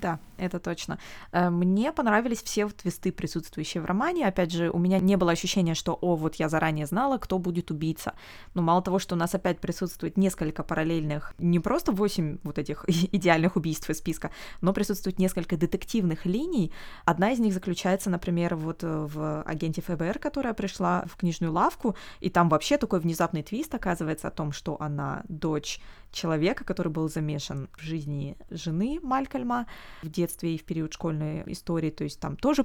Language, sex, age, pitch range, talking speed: Russian, female, 20-39, 165-200 Hz, 175 wpm